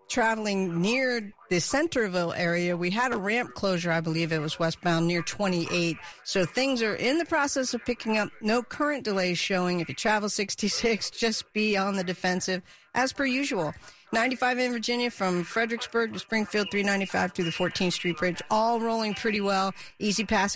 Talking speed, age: 180 wpm, 50-69